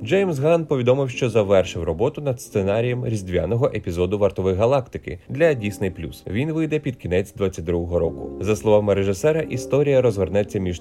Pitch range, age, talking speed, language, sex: 90-135 Hz, 30-49, 145 wpm, Ukrainian, male